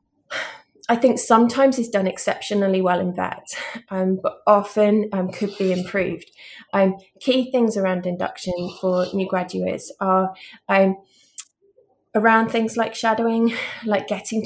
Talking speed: 135 wpm